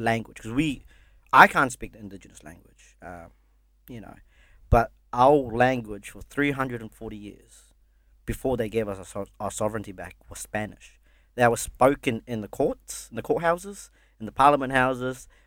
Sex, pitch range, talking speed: male, 100-130 Hz, 165 wpm